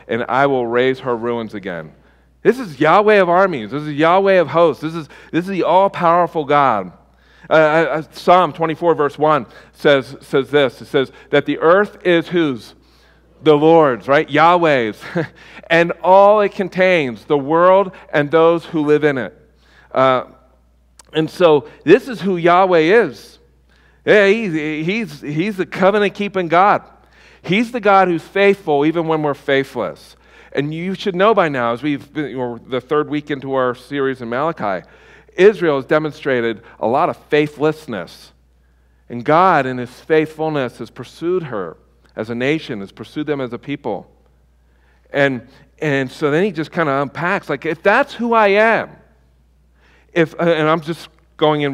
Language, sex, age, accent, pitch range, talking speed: English, male, 50-69, American, 125-175 Hz, 165 wpm